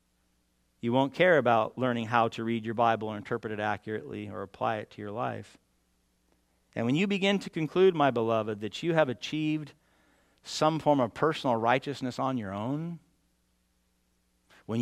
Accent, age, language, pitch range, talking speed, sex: American, 50-69, English, 110-140 Hz, 165 wpm, male